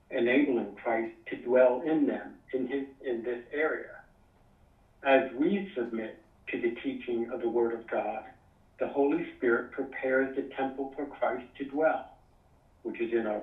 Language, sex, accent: English, male, American